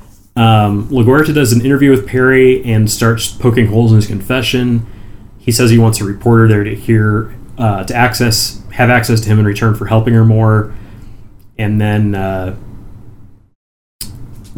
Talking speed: 160 wpm